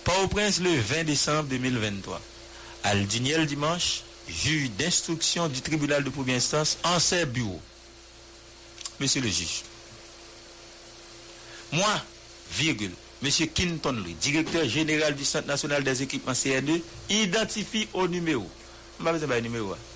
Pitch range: 120-175 Hz